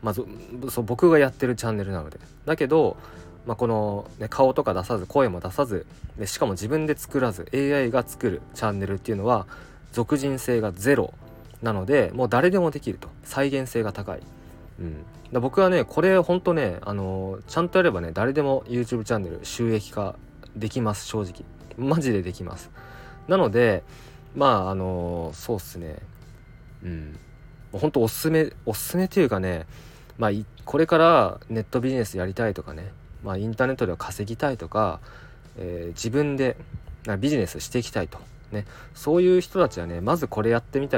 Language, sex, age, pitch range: Japanese, male, 20-39, 95-140 Hz